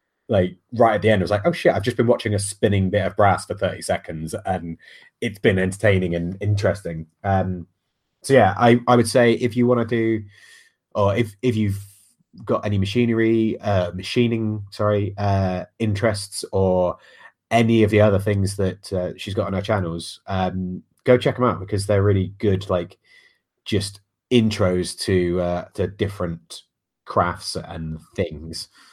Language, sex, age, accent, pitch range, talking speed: English, male, 30-49, British, 95-115 Hz, 175 wpm